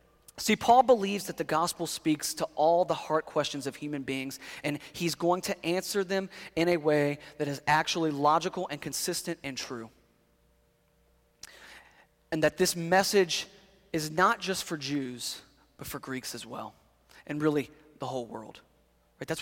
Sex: male